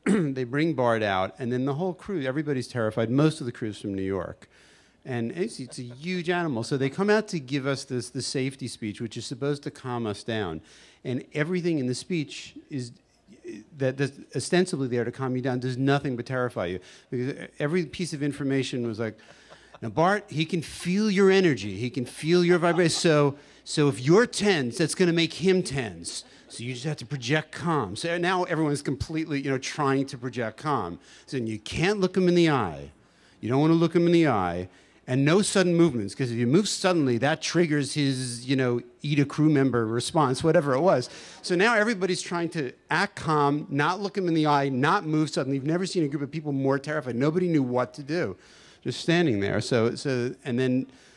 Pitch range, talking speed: 125-170 Hz, 215 wpm